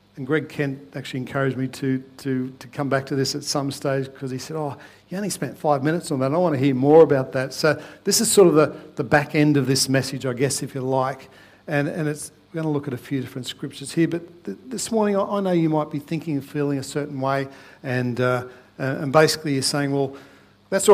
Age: 60-79